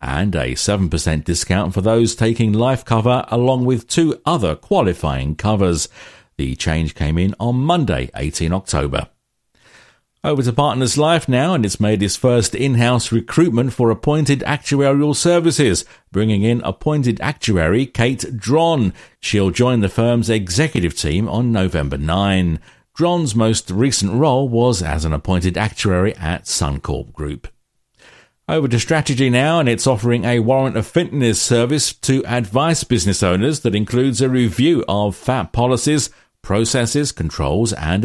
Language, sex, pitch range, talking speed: English, male, 90-125 Hz, 145 wpm